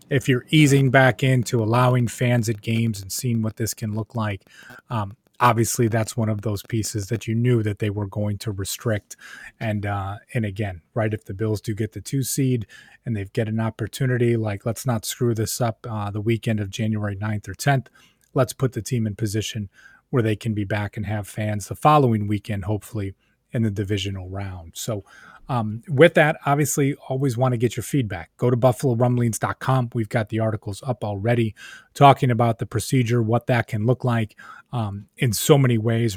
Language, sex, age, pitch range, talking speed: English, male, 30-49, 110-125 Hz, 200 wpm